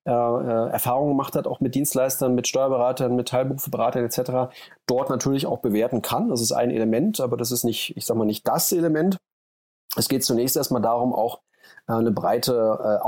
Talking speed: 190 wpm